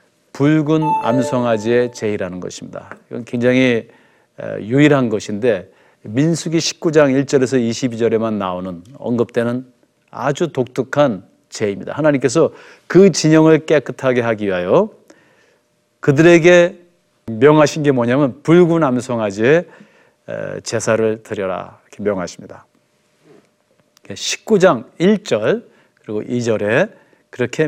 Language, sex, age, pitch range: Korean, male, 40-59, 115-160 Hz